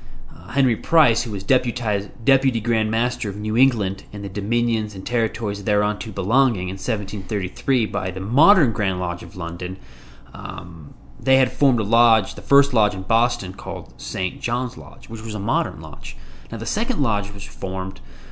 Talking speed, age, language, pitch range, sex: 175 wpm, 20-39, English, 100-135 Hz, male